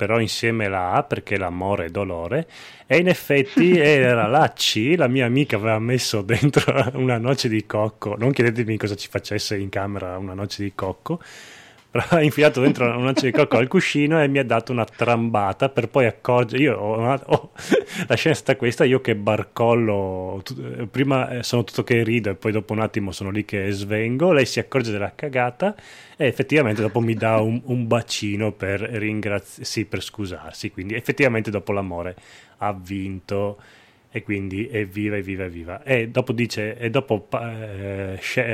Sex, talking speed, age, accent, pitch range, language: male, 180 wpm, 20-39, native, 100-125 Hz, Italian